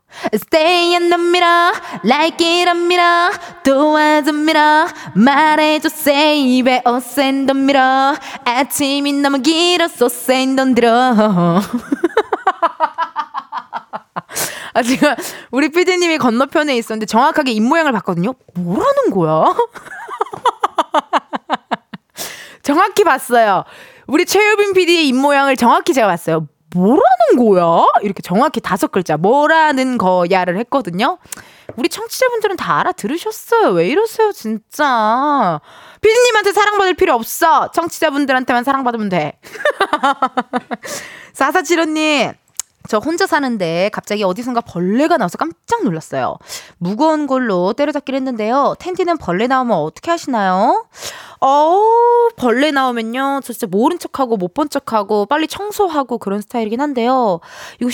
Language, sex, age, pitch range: Korean, female, 20-39, 225-325 Hz